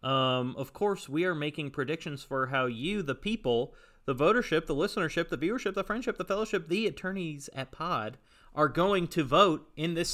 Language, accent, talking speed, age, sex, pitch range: English, American, 190 wpm, 30-49, male, 120-165 Hz